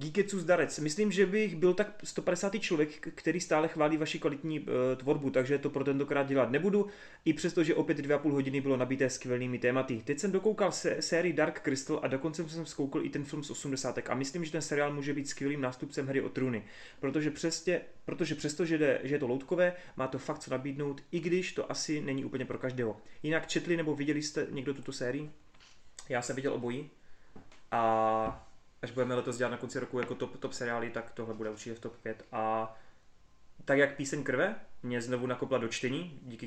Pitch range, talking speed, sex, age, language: 115-150 Hz, 200 wpm, male, 30-49, Czech